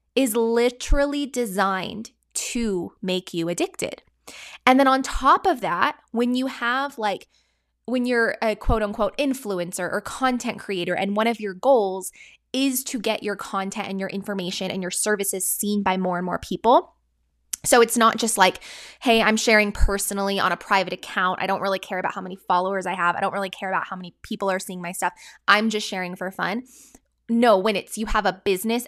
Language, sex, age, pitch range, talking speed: English, female, 20-39, 190-240 Hz, 195 wpm